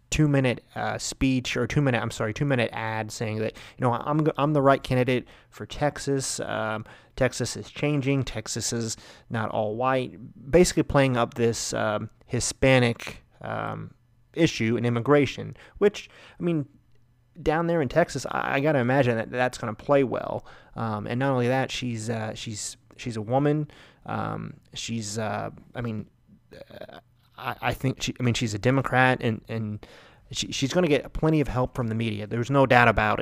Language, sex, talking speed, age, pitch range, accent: English, male, 180 wpm, 30-49, 115-140 Hz, American